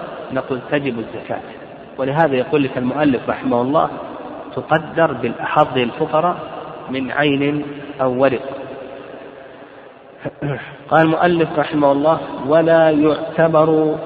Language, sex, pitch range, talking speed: Arabic, male, 135-170 Hz, 95 wpm